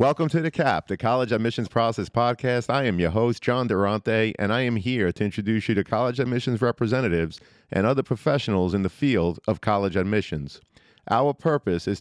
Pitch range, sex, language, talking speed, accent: 100-130 Hz, male, English, 190 wpm, American